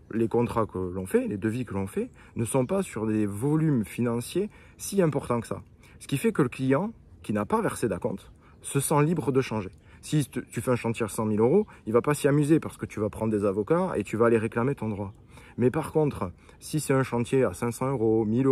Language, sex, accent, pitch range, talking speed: French, male, French, 110-140 Hz, 250 wpm